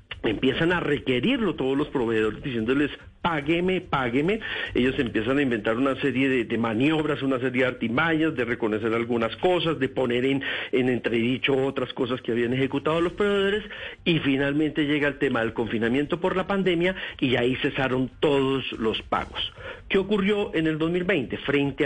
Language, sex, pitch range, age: Spanish, male, 125-180 Hz, 50-69